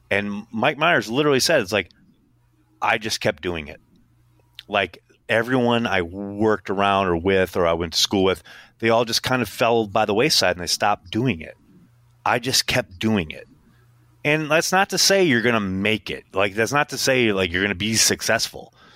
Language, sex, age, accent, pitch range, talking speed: English, male, 30-49, American, 100-125 Hz, 205 wpm